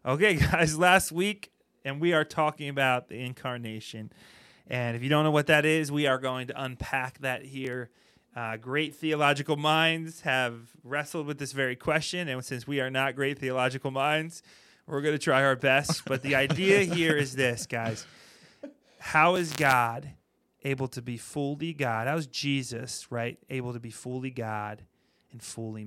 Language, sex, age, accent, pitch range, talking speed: English, male, 30-49, American, 120-150 Hz, 175 wpm